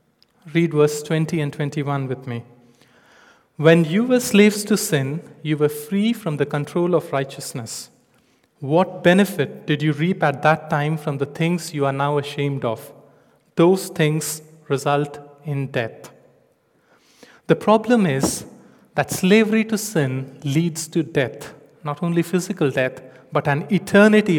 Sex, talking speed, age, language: male, 145 wpm, 30-49, English